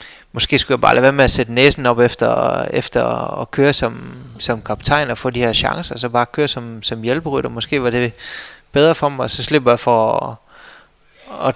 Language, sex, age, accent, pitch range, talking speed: Danish, male, 20-39, native, 115-135 Hz, 220 wpm